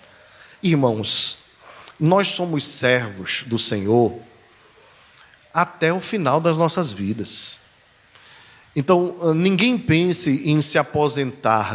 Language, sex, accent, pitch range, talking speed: Portuguese, male, Brazilian, 115-160 Hz, 90 wpm